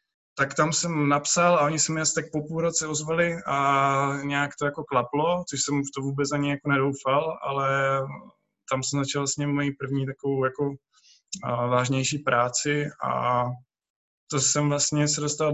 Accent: native